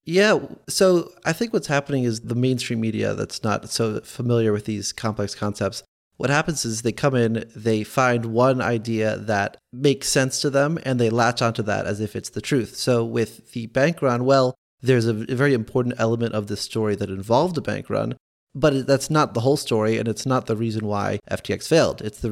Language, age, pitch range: English, 30-49, 110-140 Hz